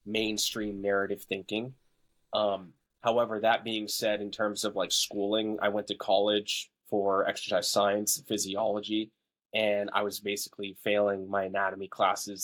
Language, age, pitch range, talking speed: English, 20-39, 100-115 Hz, 140 wpm